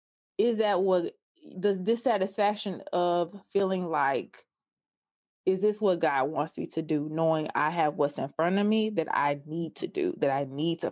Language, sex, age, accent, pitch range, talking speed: English, female, 20-39, American, 170-205 Hz, 180 wpm